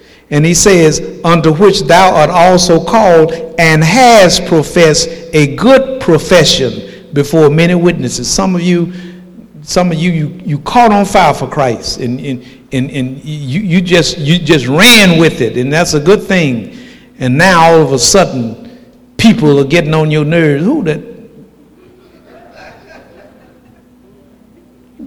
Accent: American